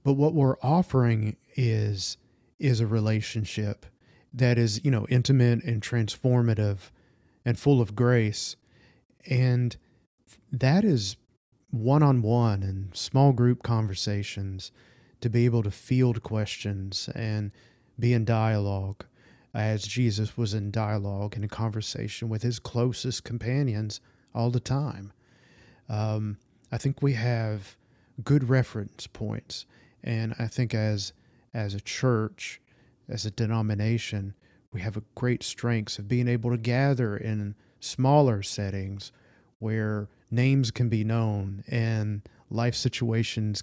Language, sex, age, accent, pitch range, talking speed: English, male, 40-59, American, 105-125 Hz, 130 wpm